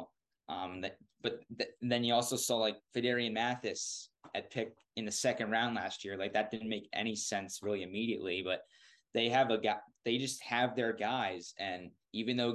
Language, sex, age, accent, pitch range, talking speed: English, male, 20-39, American, 100-115 Hz, 180 wpm